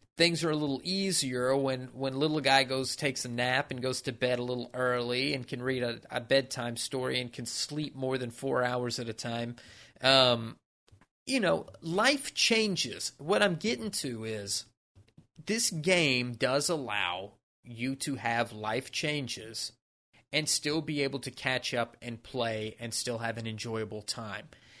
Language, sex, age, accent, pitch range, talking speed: English, male, 30-49, American, 120-150 Hz, 170 wpm